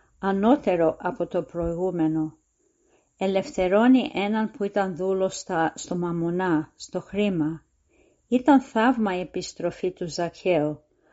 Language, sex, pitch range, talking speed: Greek, female, 170-210 Hz, 100 wpm